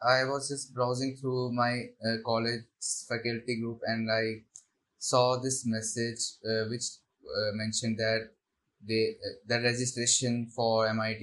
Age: 20-39